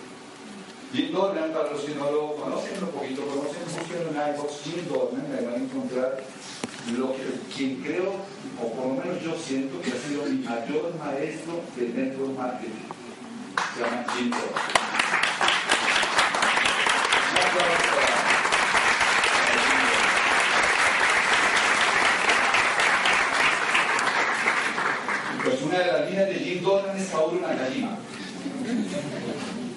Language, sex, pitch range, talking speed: Spanish, male, 130-205 Hz, 110 wpm